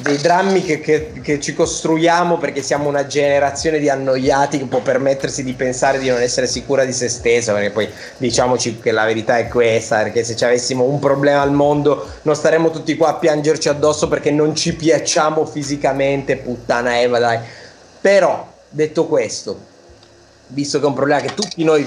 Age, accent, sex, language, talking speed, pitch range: 30-49, native, male, Italian, 180 wpm, 135-165 Hz